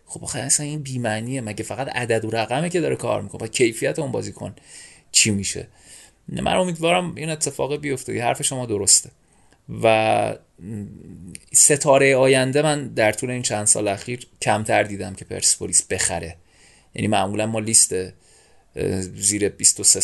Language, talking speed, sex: Persian, 145 wpm, male